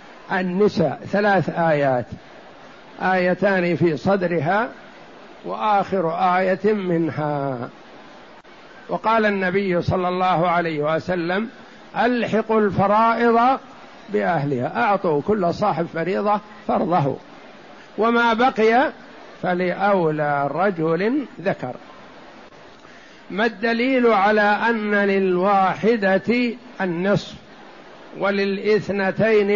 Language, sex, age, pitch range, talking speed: Arabic, male, 60-79, 160-205 Hz, 70 wpm